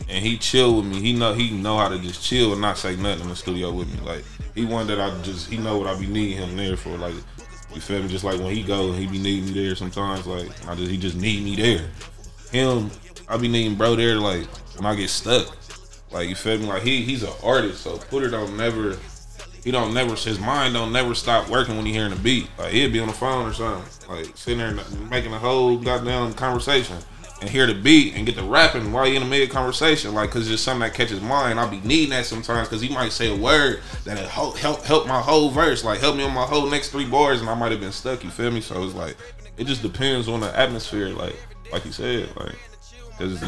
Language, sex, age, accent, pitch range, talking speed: English, male, 20-39, American, 100-120 Hz, 265 wpm